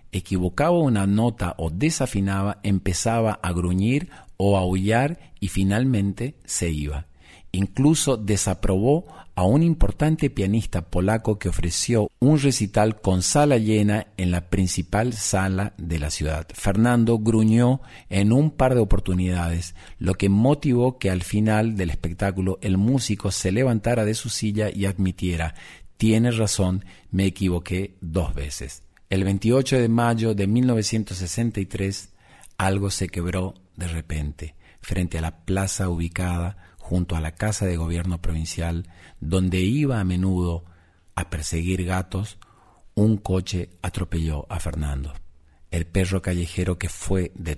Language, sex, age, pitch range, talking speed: Spanish, male, 50-69, 85-110 Hz, 135 wpm